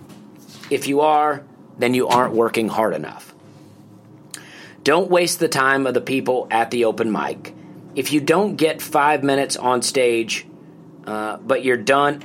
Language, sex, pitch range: English, male, 120-150 Hz